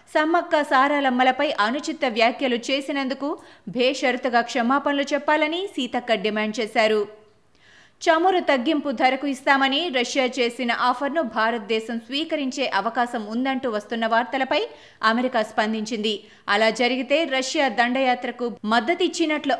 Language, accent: Telugu, native